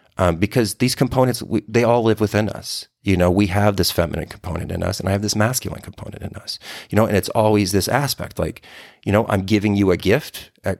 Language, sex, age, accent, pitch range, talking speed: English, male, 30-49, American, 95-115 Hz, 240 wpm